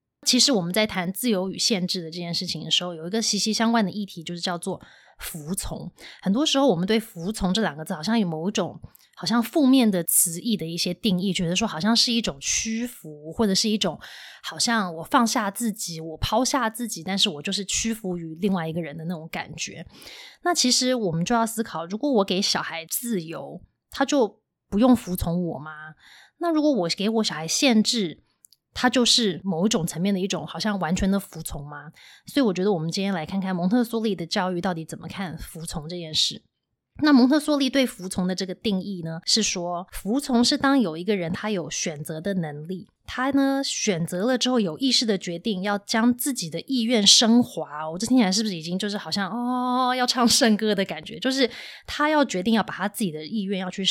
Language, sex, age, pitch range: Chinese, female, 20-39, 175-235 Hz